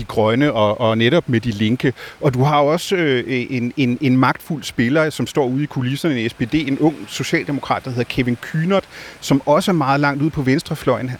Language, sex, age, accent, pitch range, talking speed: Danish, male, 40-59, native, 125-160 Hz, 215 wpm